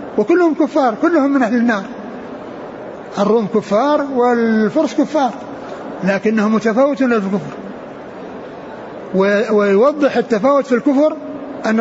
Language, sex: Arabic, male